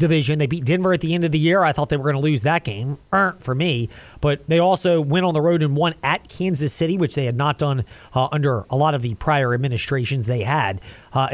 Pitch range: 145-220 Hz